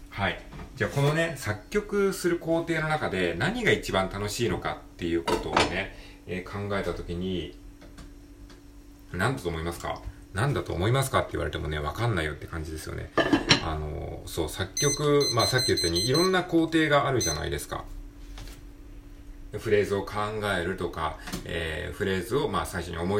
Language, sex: Japanese, male